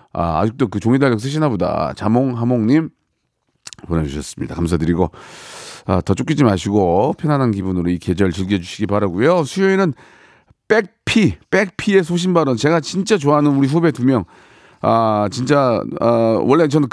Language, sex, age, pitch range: Korean, male, 40-59, 105-165 Hz